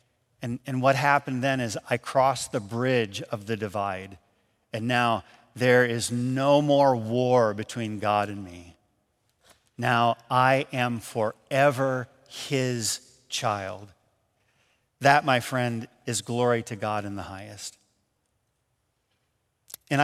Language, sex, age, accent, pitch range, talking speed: English, male, 50-69, American, 115-140 Hz, 125 wpm